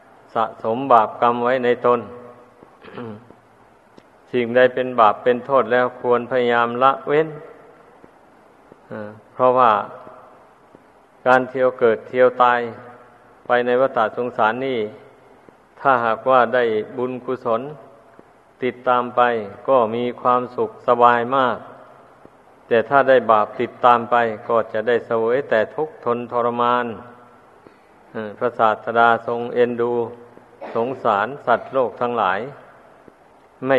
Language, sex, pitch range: Thai, male, 120-130 Hz